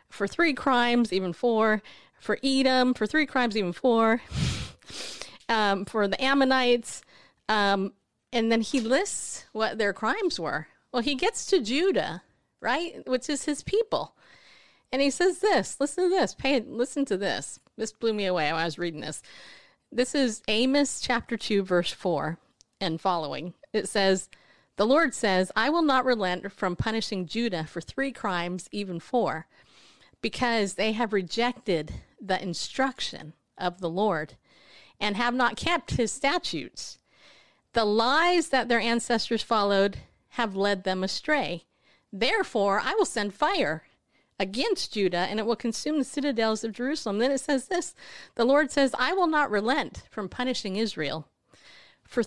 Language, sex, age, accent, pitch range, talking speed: English, female, 30-49, American, 200-270 Hz, 155 wpm